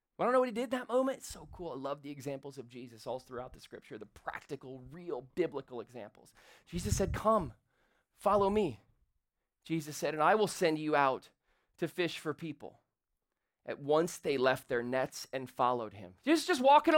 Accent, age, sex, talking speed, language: American, 30-49, male, 195 wpm, English